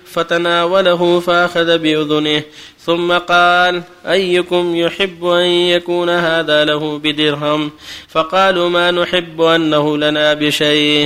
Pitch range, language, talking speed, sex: 155-180 Hz, Arabic, 100 wpm, male